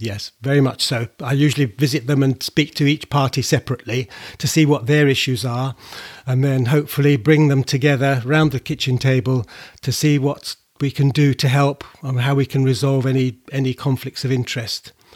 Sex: male